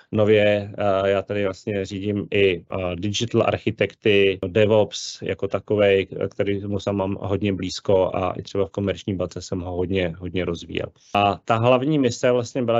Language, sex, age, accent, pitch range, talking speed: Czech, male, 30-49, native, 100-115 Hz, 150 wpm